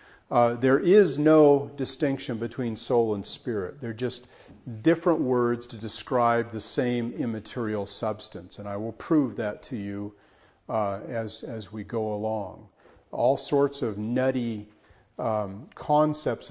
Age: 40-59